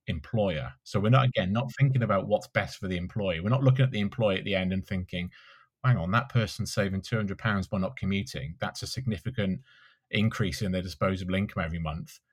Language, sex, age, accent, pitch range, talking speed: English, male, 30-49, British, 95-115 Hz, 215 wpm